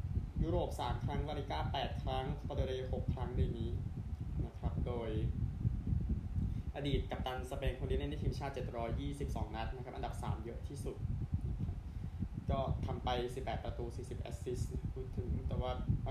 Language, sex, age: Thai, male, 20-39